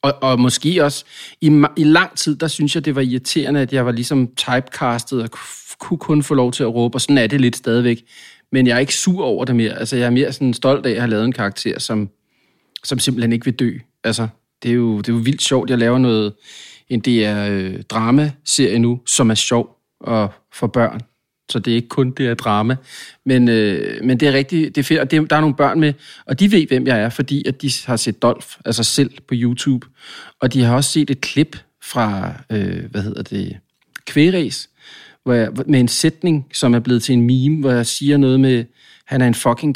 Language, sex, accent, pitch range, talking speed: English, male, Danish, 120-140 Hz, 230 wpm